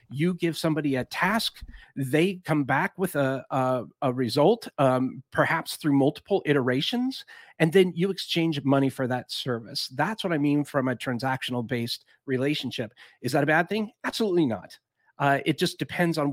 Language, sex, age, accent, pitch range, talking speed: English, male, 40-59, American, 130-160 Hz, 170 wpm